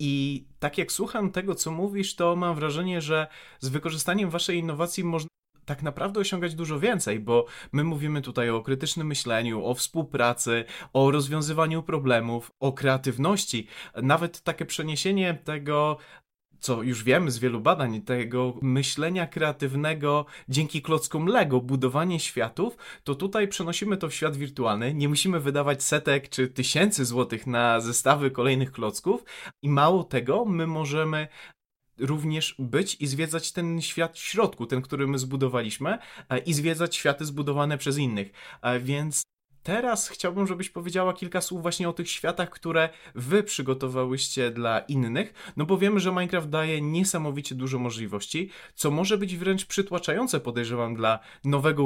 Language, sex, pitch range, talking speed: Polish, male, 130-175 Hz, 145 wpm